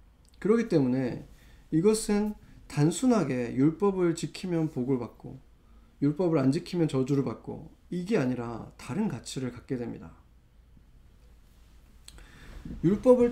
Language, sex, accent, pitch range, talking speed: English, male, Korean, 130-205 Hz, 90 wpm